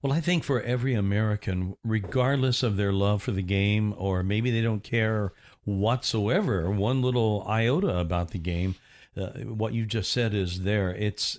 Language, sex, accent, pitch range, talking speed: English, male, American, 105-130 Hz, 175 wpm